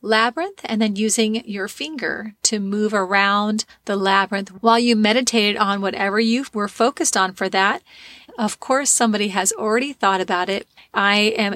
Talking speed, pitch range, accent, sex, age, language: 165 wpm, 200-230 Hz, American, female, 30-49, English